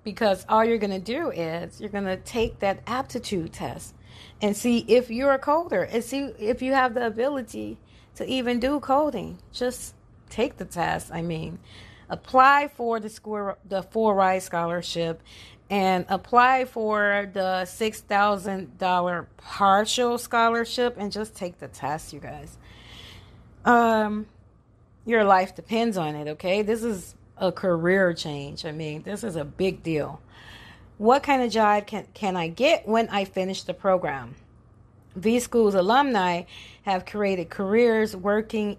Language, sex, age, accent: English, female, 30-49, American